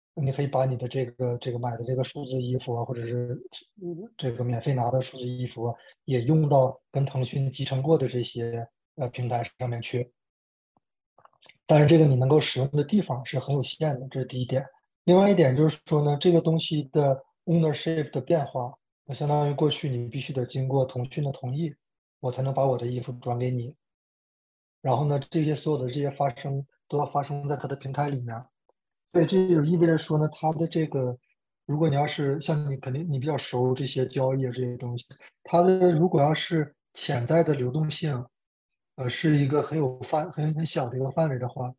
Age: 20-39